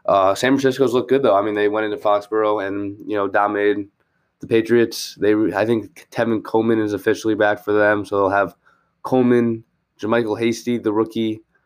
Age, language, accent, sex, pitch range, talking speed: 20-39, English, American, male, 105-115 Hz, 185 wpm